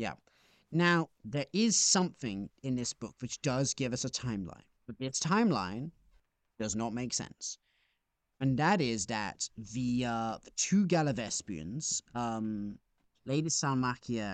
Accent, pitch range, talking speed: British, 110-160 Hz, 130 wpm